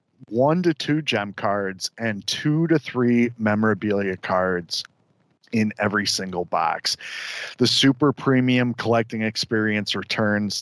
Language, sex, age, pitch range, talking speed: English, male, 40-59, 105-130 Hz, 120 wpm